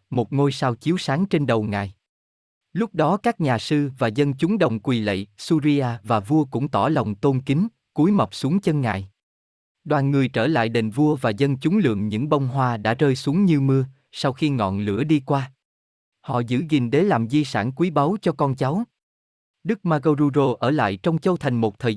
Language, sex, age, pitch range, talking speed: Vietnamese, male, 20-39, 110-155 Hz, 210 wpm